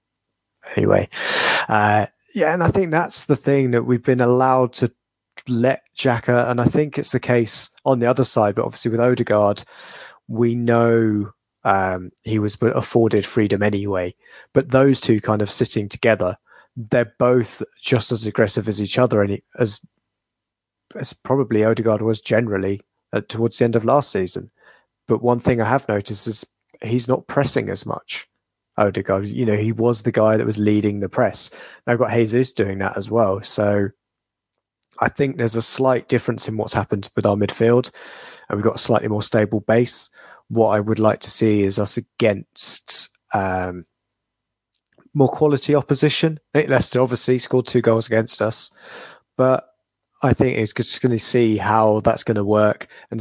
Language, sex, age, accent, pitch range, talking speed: English, male, 20-39, British, 105-125 Hz, 175 wpm